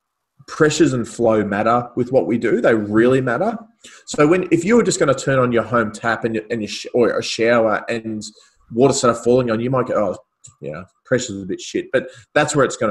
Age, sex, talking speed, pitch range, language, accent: 20-39, male, 240 wpm, 105-125 Hz, English, Australian